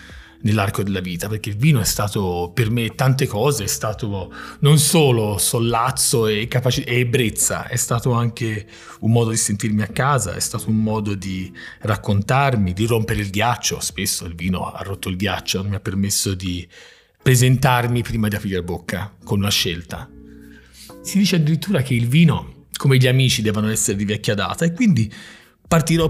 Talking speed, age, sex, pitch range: 180 wpm, 30-49, male, 100-140 Hz